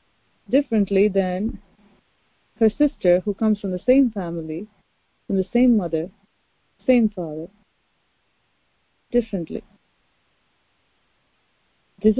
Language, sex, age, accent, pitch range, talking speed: English, female, 30-49, Indian, 180-210 Hz, 90 wpm